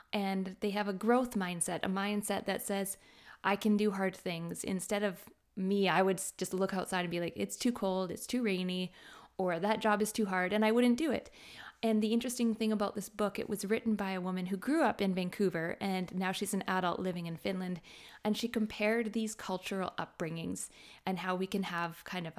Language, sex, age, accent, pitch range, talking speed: English, female, 20-39, American, 185-215 Hz, 220 wpm